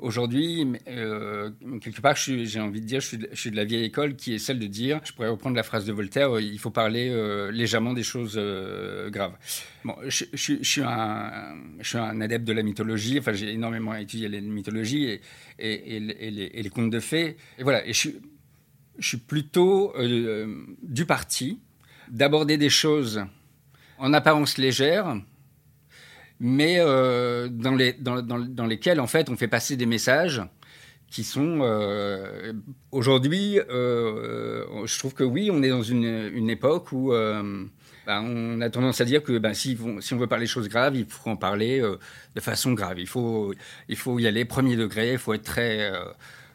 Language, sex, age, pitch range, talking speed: French, male, 50-69, 110-135 Hz, 200 wpm